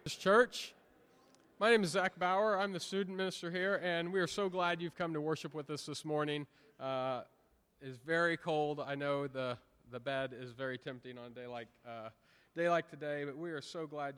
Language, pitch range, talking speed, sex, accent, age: English, 120-150 Hz, 210 wpm, male, American, 30-49